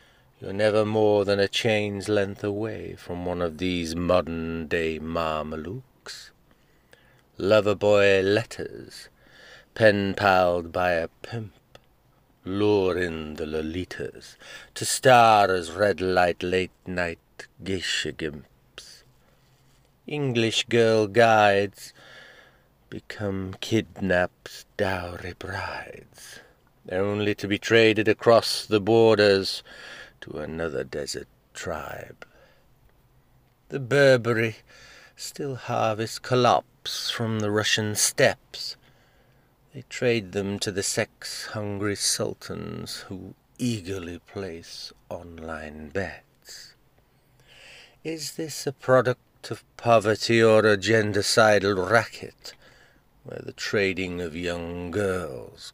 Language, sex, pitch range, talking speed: English, male, 90-115 Hz, 95 wpm